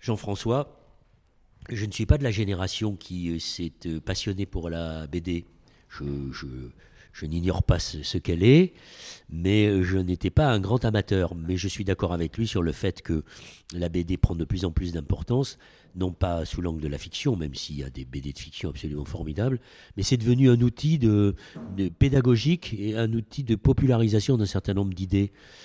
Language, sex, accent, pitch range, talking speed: French, male, French, 85-110 Hz, 190 wpm